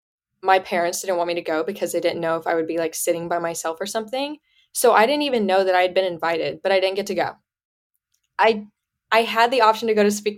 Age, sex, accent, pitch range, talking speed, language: 10-29, female, American, 175-215 Hz, 265 wpm, English